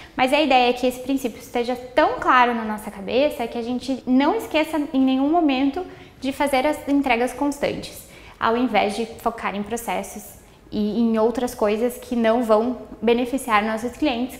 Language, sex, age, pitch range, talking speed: Portuguese, female, 10-29, 220-275 Hz, 175 wpm